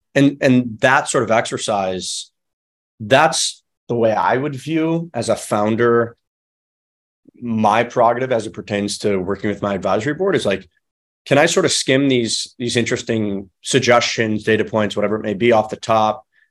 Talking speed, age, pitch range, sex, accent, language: 165 wpm, 30-49, 105-135 Hz, male, American, English